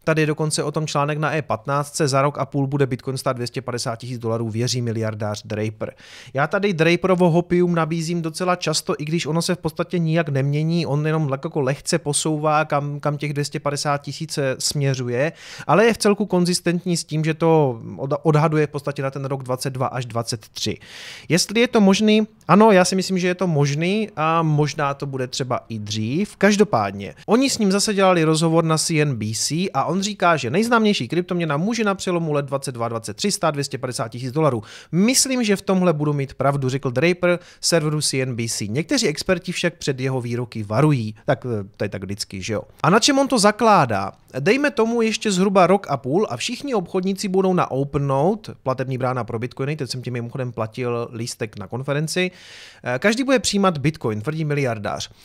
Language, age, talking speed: Czech, 30-49, 180 wpm